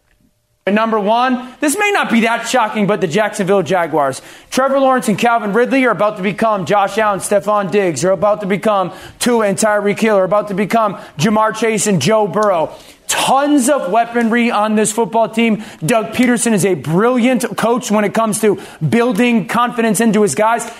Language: English